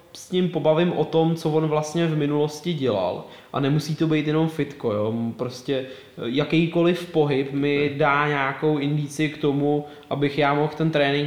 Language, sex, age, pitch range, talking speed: Czech, male, 20-39, 130-155 Hz, 170 wpm